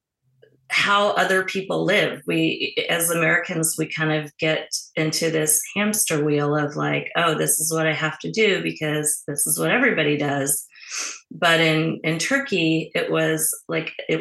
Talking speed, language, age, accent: 165 wpm, English, 30-49, American